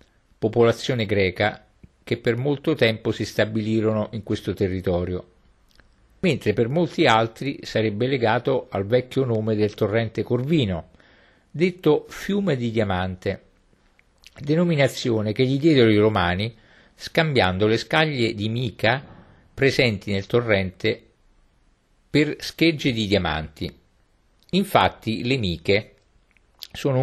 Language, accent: Italian, native